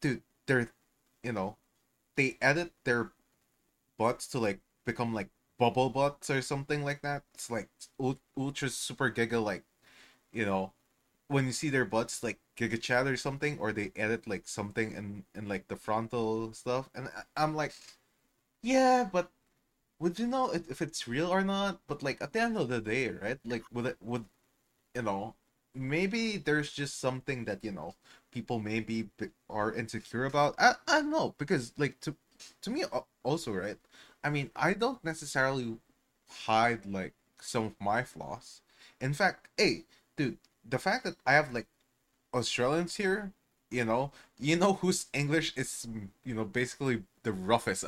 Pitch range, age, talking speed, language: 115-150 Hz, 20-39, 165 wpm, English